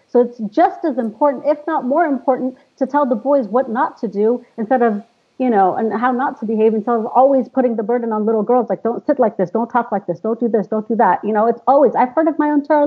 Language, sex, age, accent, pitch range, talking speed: English, female, 40-59, American, 220-280 Hz, 285 wpm